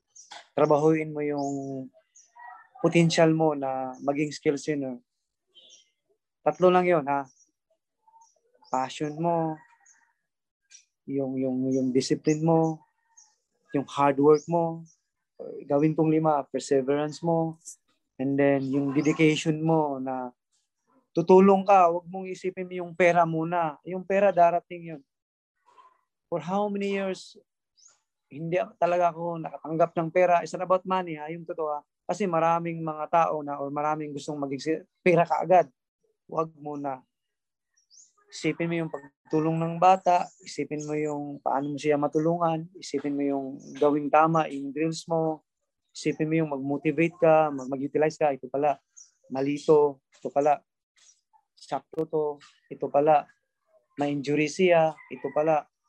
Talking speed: 125 wpm